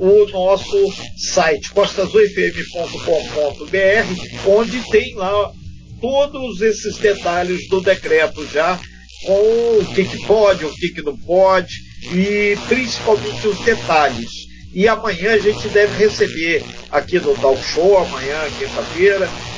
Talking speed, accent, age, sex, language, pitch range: 115 wpm, Brazilian, 50-69, male, Portuguese, 180-225 Hz